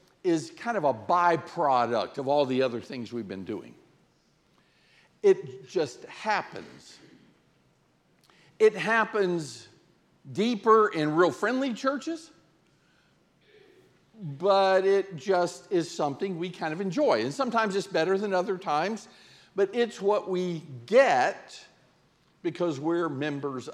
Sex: male